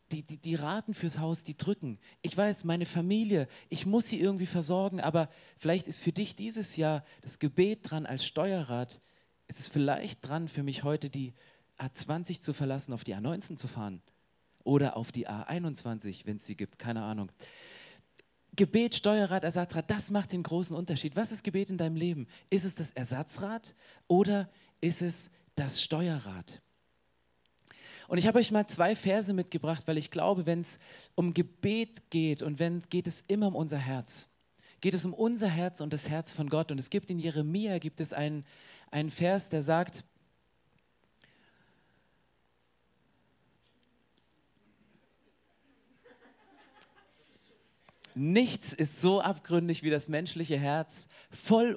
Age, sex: 40-59, male